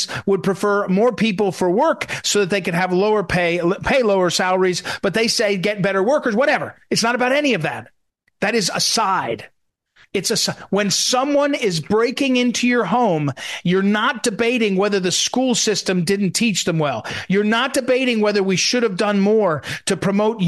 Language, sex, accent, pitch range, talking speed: English, male, American, 175-230 Hz, 190 wpm